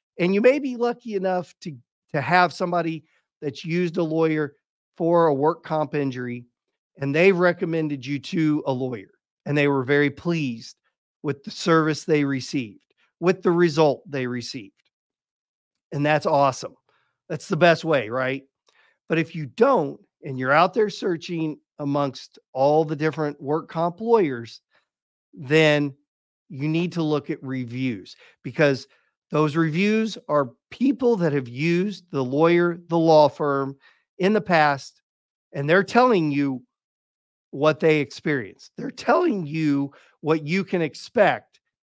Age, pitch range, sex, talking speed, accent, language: 40-59, 140-175 Hz, male, 145 wpm, American, English